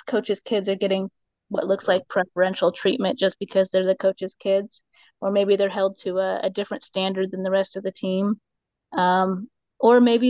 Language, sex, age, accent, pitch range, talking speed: English, female, 20-39, American, 195-230 Hz, 190 wpm